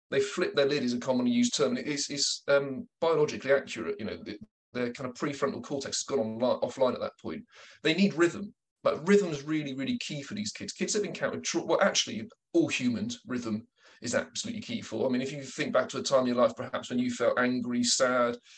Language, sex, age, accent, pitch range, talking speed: English, male, 30-49, British, 130-195 Hz, 235 wpm